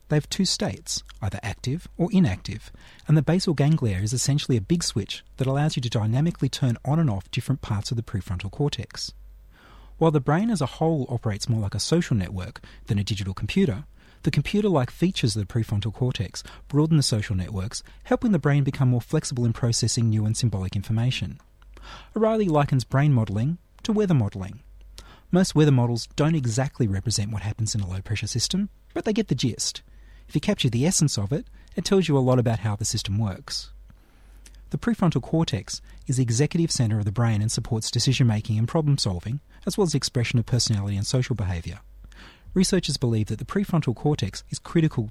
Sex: male